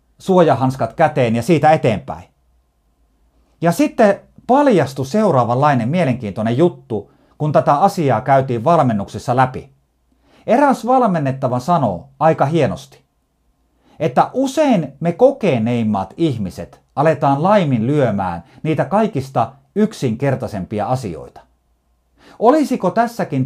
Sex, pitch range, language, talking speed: male, 115-185 Hz, Finnish, 90 wpm